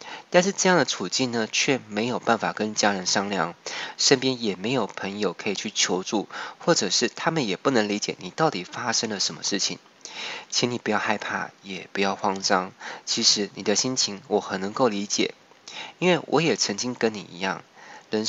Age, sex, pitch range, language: 20-39, male, 100-120 Hz, Chinese